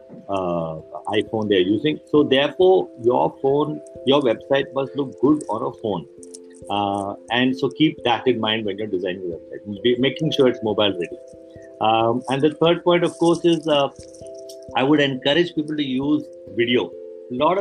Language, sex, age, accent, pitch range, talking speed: Hindi, male, 50-69, native, 110-150 Hz, 175 wpm